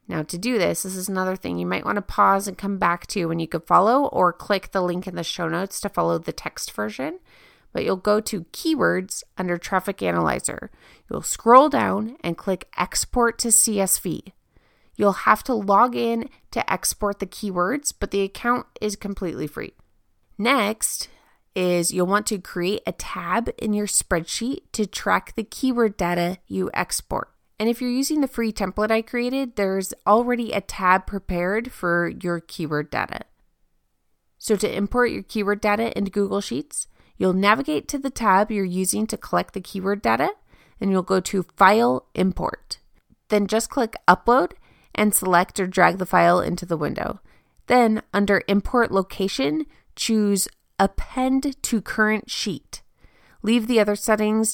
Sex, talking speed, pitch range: female, 170 wpm, 185-225 Hz